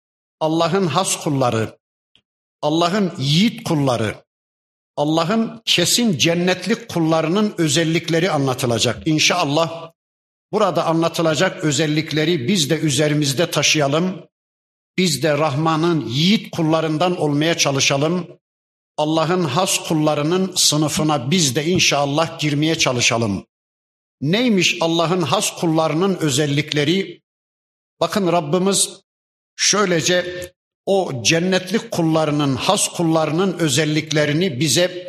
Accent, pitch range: native, 150-185 Hz